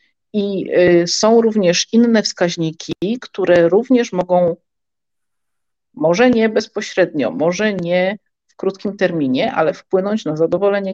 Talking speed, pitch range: 110 wpm, 170-205 Hz